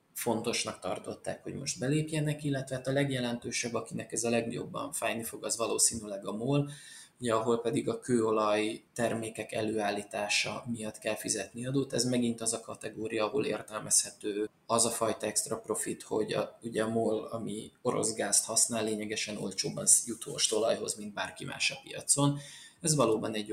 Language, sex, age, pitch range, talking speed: Hungarian, male, 20-39, 110-135 Hz, 160 wpm